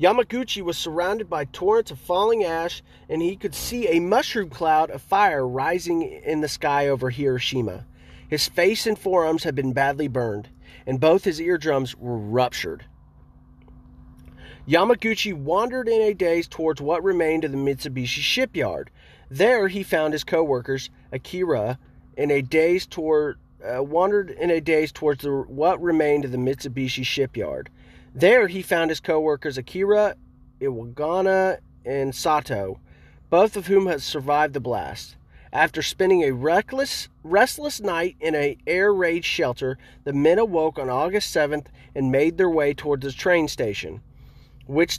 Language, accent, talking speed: English, American, 145 wpm